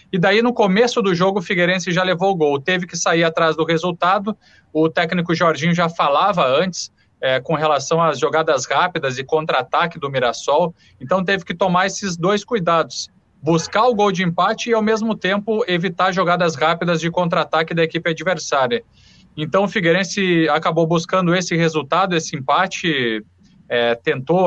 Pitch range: 155-185 Hz